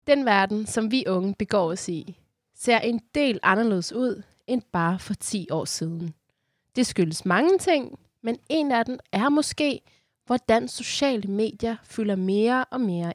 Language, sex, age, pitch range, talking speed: Danish, female, 20-39, 165-240 Hz, 165 wpm